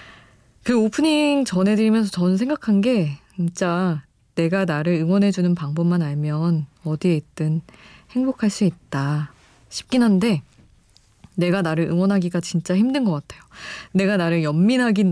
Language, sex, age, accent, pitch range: Korean, female, 20-39, native, 155-200 Hz